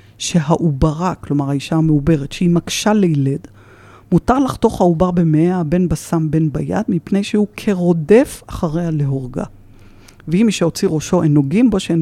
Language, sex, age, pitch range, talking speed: Hebrew, female, 50-69, 140-180 Hz, 140 wpm